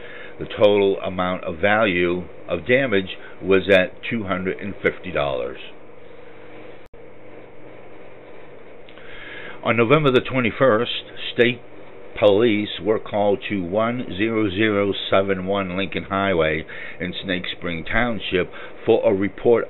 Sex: male